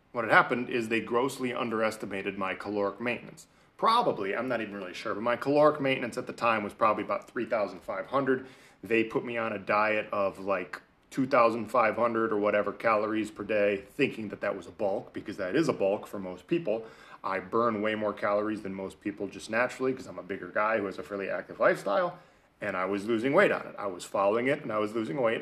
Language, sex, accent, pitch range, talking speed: English, male, American, 100-125 Hz, 215 wpm